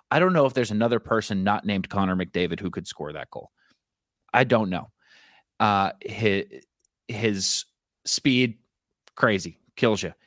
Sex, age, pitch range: male, 30-49, 95-115 Hz